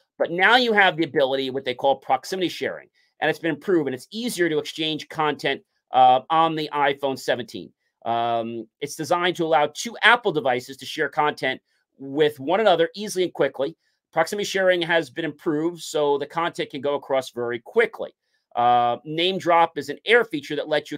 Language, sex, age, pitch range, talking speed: English, male, 40-59, 135-185 Hz, 190 wpm